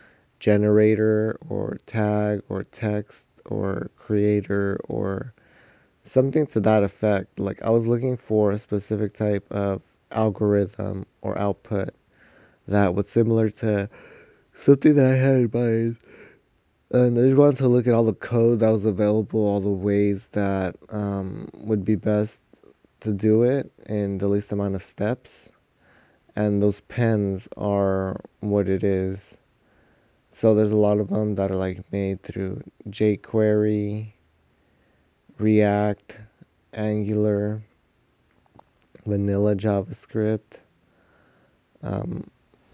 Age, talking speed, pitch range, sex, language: 20-39, 120 wpm, 100-110 Hz, male, English